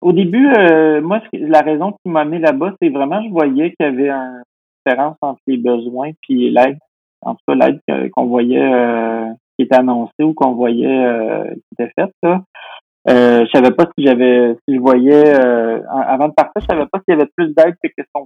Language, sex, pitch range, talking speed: French, male, 125-155 Hz, 225 wpm